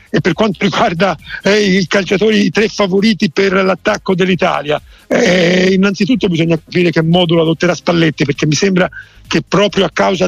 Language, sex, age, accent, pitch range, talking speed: Italian, male, 50-69, native, 155-180 Hz, 165 wpm